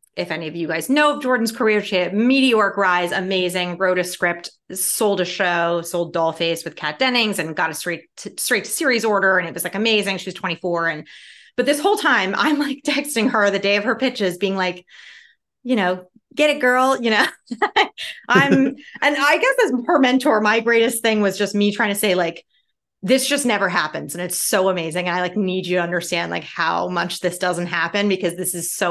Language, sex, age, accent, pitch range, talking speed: English, female, 30-49, American, 175-225 Hz, 220 wpm